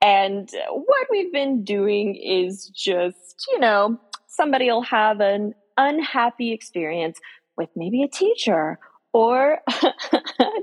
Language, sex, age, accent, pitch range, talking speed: English, female, 20-39, American, 190-275 Hz, 115 wpm